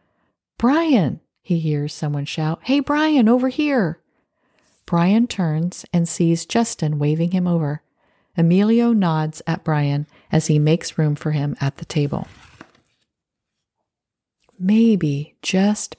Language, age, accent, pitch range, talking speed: English, 40-59, American, 155-195 Hz, 120 wpm